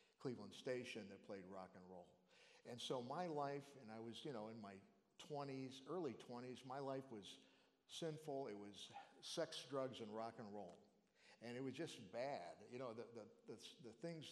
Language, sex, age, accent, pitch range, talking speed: English, male, 50-69, American, 110-140 Hz, 190 wpm